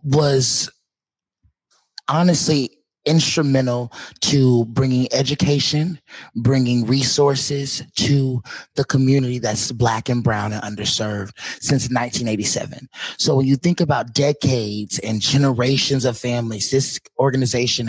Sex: male